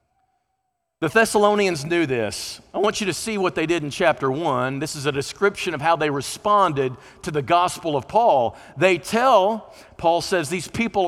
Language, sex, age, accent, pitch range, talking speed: English, male, 50-69, American, 185-240 Hz, 185 wpm